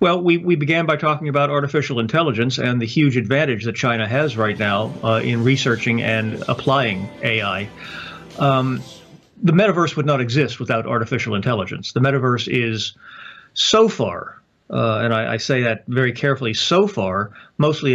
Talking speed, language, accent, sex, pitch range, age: 165 wpm, English, American, male, 115-140 Hz, 40-59